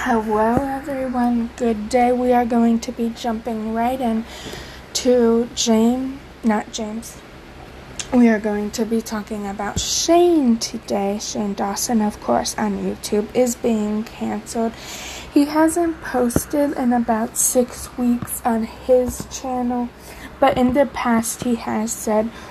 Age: 20-39